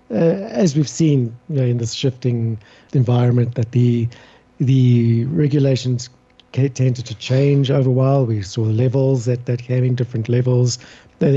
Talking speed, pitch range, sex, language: 160 wpm, 115-135 Hz, male, English